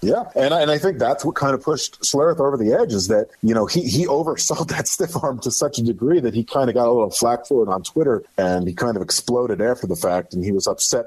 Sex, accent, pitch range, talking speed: male, American, 110-150 Hz, 285 wpm